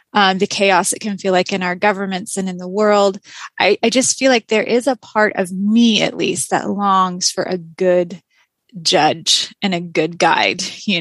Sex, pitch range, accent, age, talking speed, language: female, 185-215 Hz, American, 20-39, 205 wpm, English